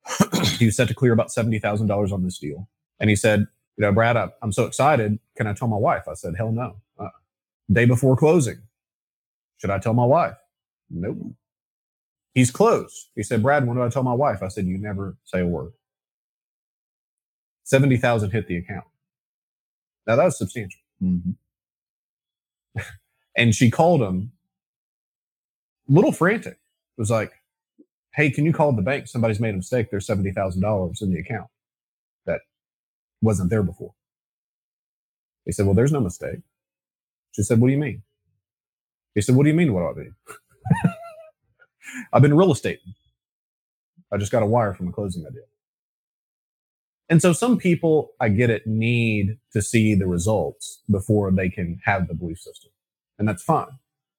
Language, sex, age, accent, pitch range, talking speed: English, male, 30-49, American, 90-125 Hz, 170 wpm